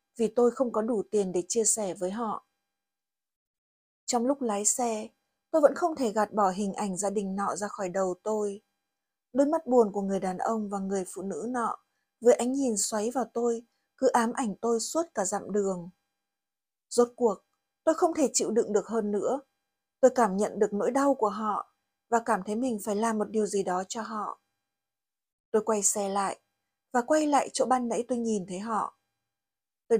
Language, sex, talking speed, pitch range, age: Vietnamese, female, 200 wpm, 200-245 Hz, 20-39